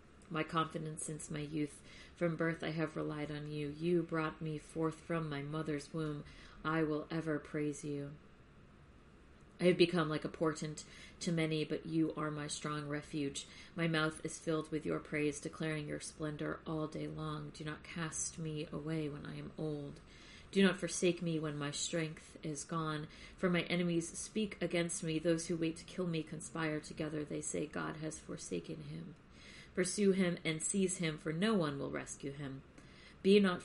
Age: 40-59